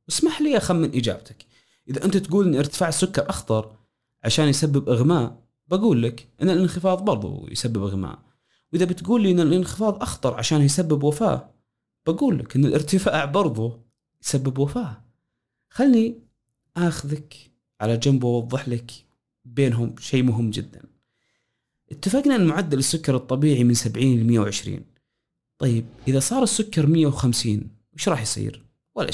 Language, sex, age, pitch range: Arabic, male, 30-49, 120-195 Hz